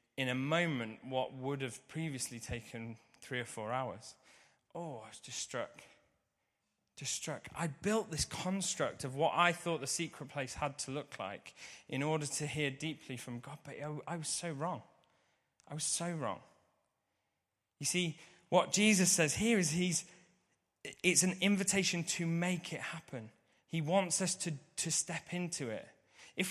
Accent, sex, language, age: British, male, English, 20-39